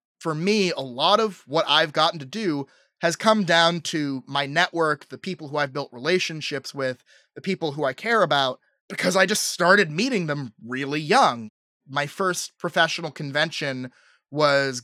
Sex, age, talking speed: male, 30-49, 170 wpm